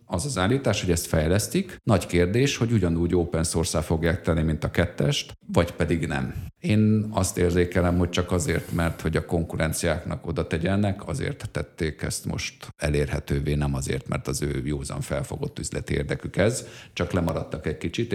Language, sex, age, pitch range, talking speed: Hungarian, male, 50-69, 80-105 Hz, 170 wpm